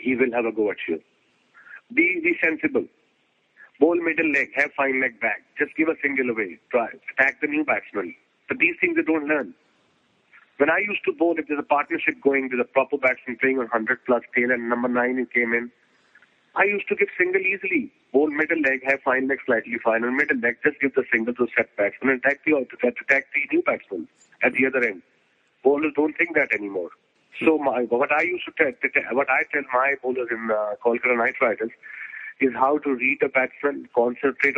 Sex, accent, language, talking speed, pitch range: male, Indian, English, 215 wpm, 125-150 Hz